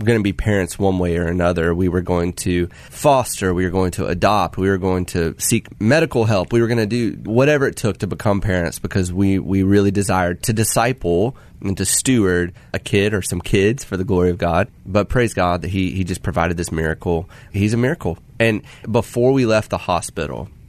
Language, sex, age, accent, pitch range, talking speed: English, male, 30-49, American, 85-105 Hz, 220 wpm